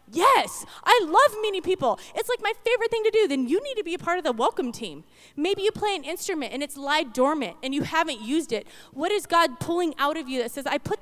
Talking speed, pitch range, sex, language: 260 wpm, 255-345 Hz, female, English